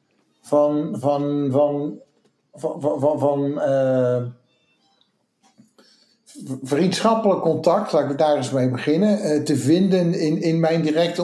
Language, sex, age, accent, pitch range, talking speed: English, male, 60-79, Dutch, 125-155 Hz, 105 wpm